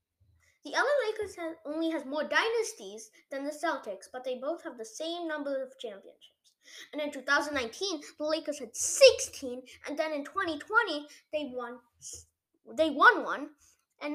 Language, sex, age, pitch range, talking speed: English, female, 20-39, 245-350 Hz, 155 wpm